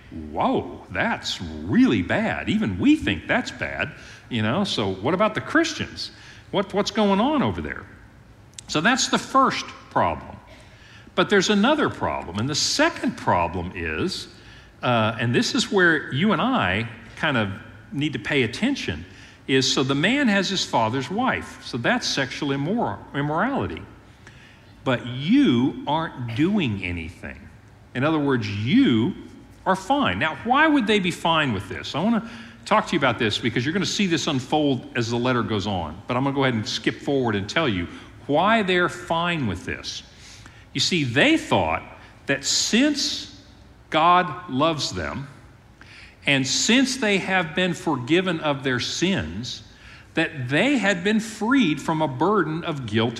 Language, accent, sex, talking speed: English, American, male, 165 wpm